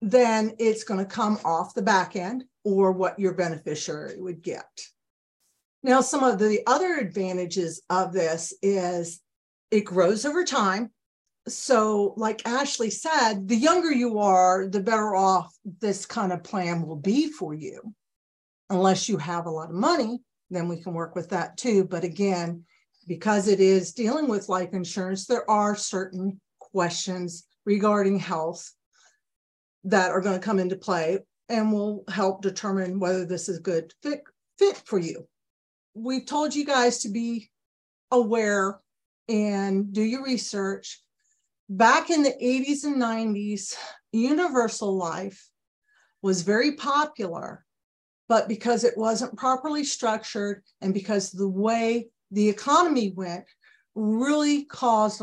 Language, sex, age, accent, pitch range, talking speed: English, female, 50-69, American, 185-235 Hz, 145 wpm